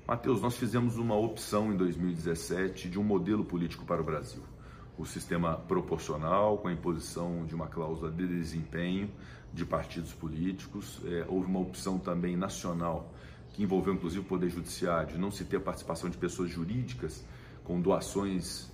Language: Portuguese